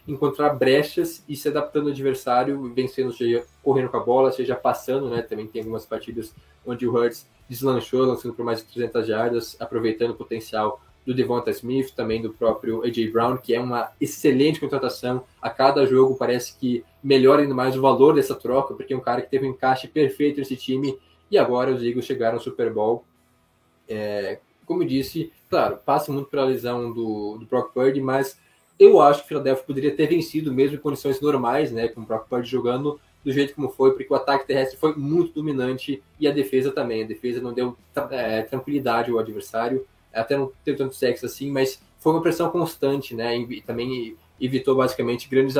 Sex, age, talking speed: male, 10-29, 195 wpm